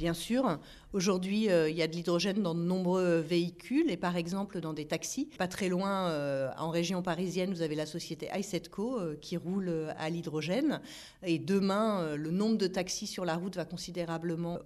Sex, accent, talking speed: female, French, 180 wpm